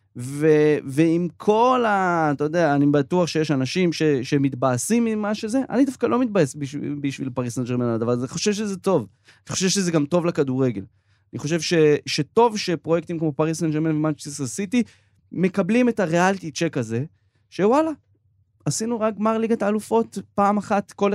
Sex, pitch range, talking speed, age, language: male, 145-200 Hz, 155 wpm, 20-39, Hebrew